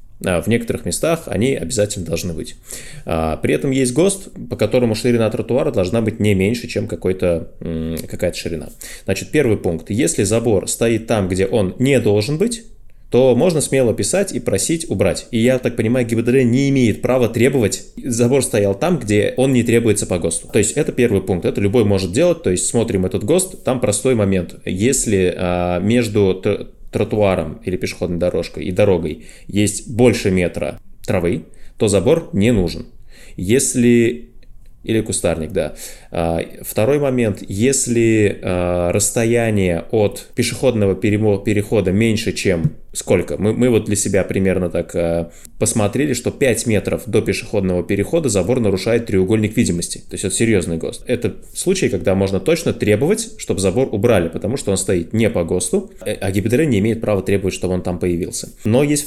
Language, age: Russian, 20-39